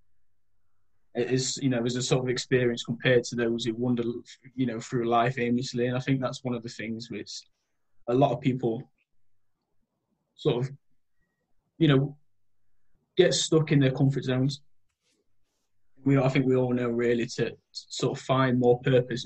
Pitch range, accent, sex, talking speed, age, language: 115-130 Hz, British, male, 180 wpm, 20-39, English